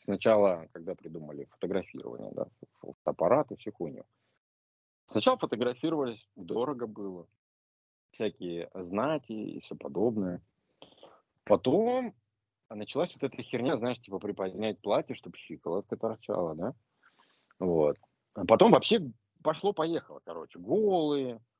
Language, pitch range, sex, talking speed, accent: Russian, 105-175 Hz, male, 105 wpm, native